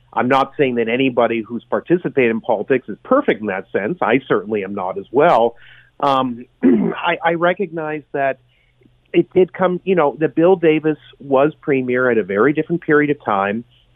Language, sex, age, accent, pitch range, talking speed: English, male, 40-59, American, 125-165 Hz, 180 wpm